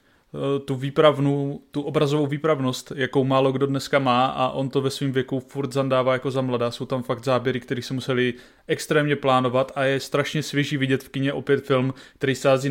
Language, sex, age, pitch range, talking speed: Czech, male, 20-39, 130-140 Hz, 190 wpm